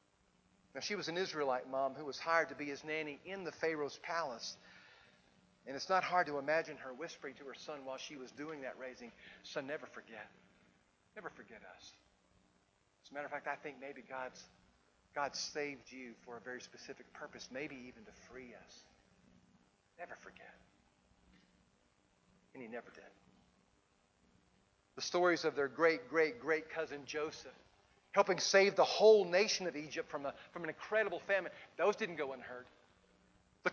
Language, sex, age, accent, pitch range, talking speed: English, male, 50-69, American, 135-215 Hz, 165 wpm